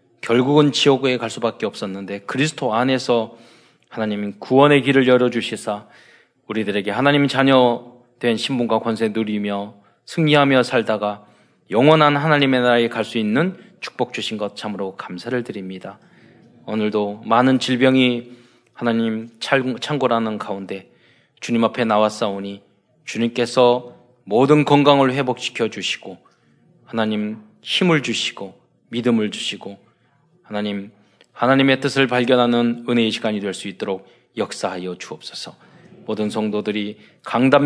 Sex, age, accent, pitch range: male, 20-39, native, 105-135 Hz